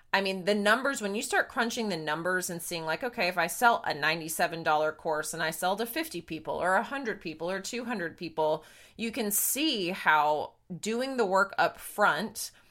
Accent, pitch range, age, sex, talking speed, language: American, 160-205 Hz, 20-39, female, 195 wpm, English